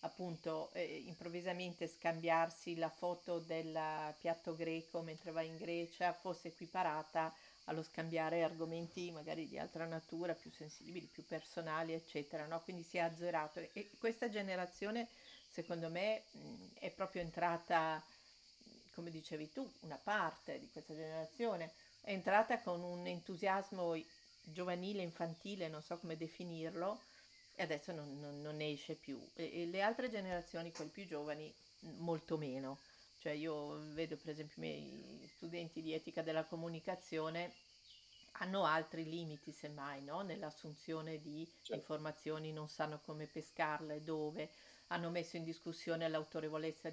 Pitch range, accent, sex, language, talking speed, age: 160-180 Hz, native, female, Italian, 135 wpm, 50-69